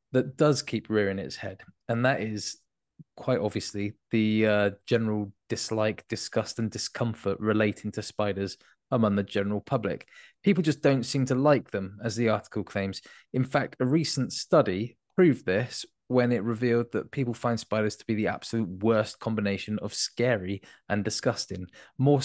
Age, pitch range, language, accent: 20-39, 105-125 Hz, English, British